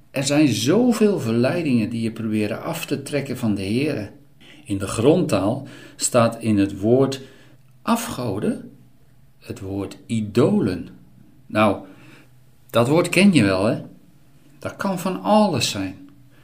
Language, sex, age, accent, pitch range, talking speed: Dutch, male, 50-69, Dutch, 110-145 Hz, 130 wpm